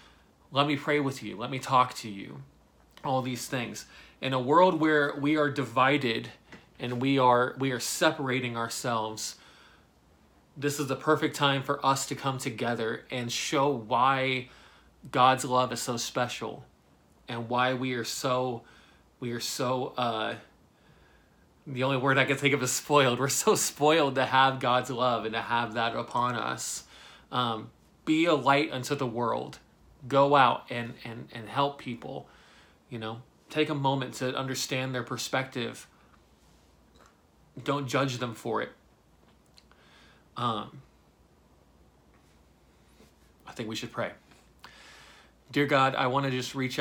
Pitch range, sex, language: 115-135 Hz, male, English